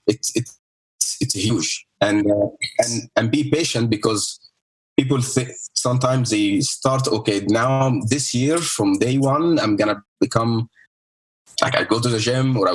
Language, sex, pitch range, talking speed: English, male, 110-135 Hz, 170 wpm